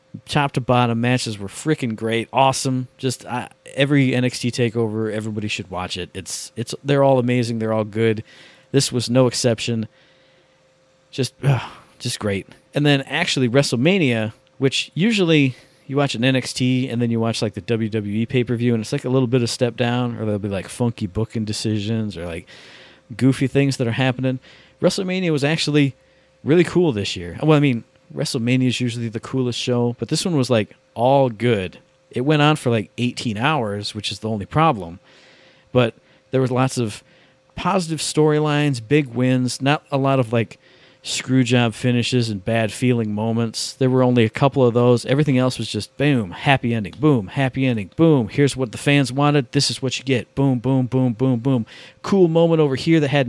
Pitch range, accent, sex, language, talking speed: 115-140 Hz, American, male, English, 190 wpm